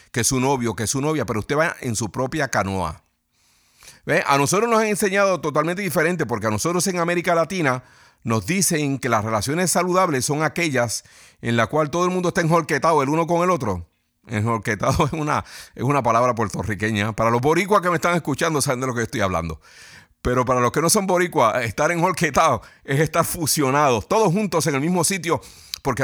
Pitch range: 120-165 Hz